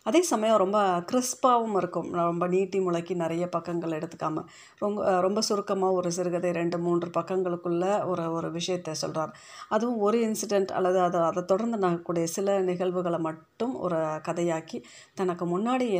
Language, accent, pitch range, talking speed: Tamil, native, 160-200 Hz, 140 wpm